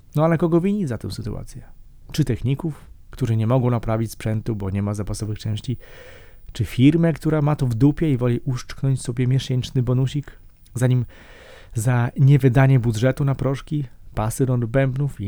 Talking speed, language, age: 165 wpm, Polish, 40-59